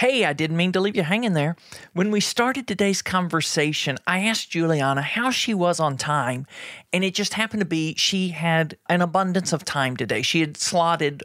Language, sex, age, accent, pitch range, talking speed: English, male, 40-59, American, 155-220 Hz, 205 wpm